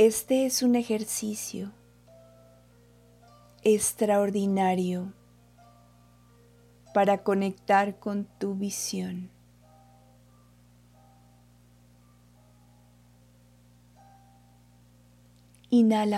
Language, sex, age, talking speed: Spanish, female, 40-59, 40 wpm